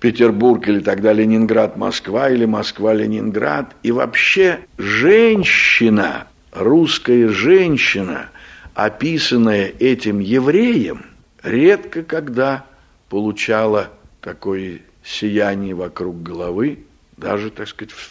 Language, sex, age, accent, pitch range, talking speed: Russian, male, 60-79, native, 105-135 Hz, 85 wpm